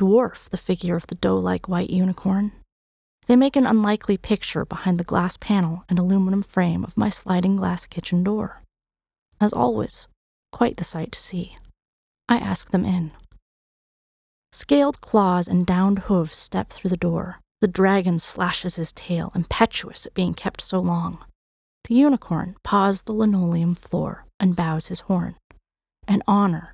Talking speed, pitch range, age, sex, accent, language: 155 wpm, 175-210 Hz, 30-49, female, American, English